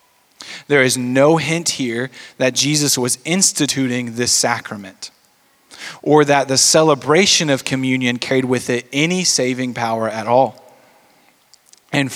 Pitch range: 120-150 Hz